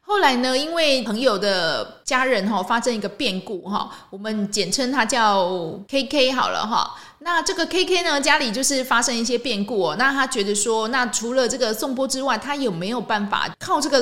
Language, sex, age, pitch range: Chinese, female, 20-39, 200-265 Hz